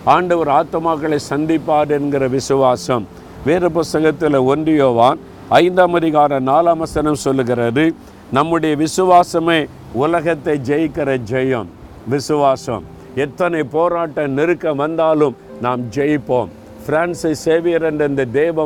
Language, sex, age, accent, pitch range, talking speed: Tamil, male, 50-69, native, 135-165 Hz, 100 wpm